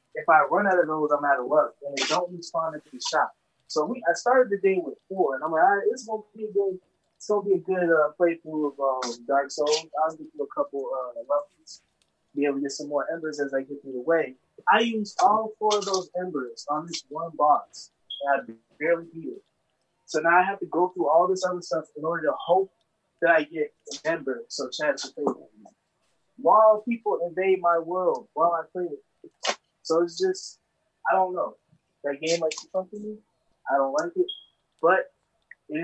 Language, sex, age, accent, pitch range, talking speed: English, male, 20-39, American, 145-200 Hz, 220 wpm